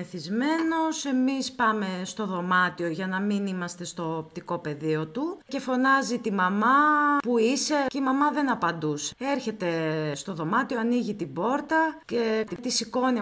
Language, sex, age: Greek, female, 30-49